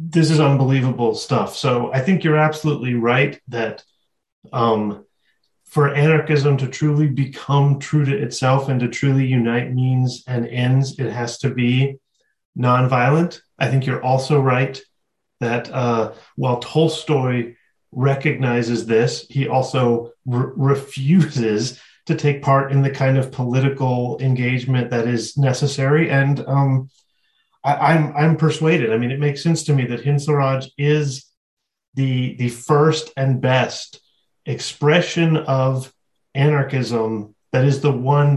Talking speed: 130 wpm